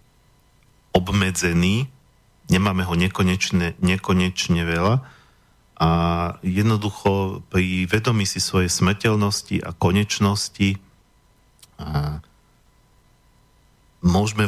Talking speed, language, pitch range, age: 70 wpm, Slovak, 90-100 Hz, 40-59